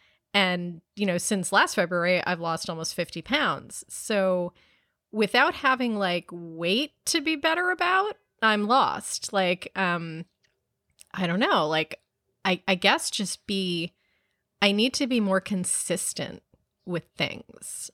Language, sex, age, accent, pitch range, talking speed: English, female, 20-39, American, 170-210 Hz, 135 wpm